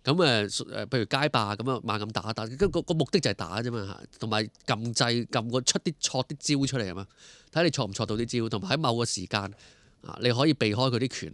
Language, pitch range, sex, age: Chinese, 105-145 Hz, male, 20-39